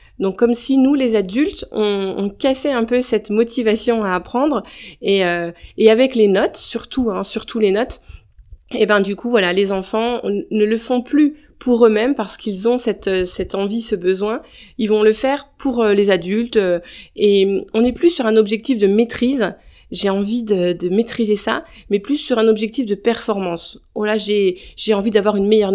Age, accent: 30-49, French